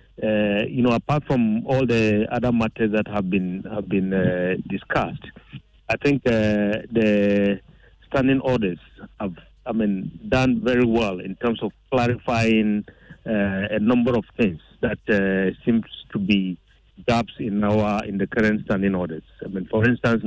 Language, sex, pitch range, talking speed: English, male, 100-120 Hz, 160 wpm